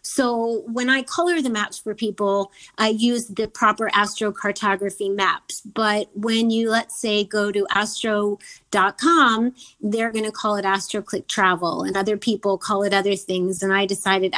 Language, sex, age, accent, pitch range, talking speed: English, female, 30-49, American, 205-245 Hz, 170 wpm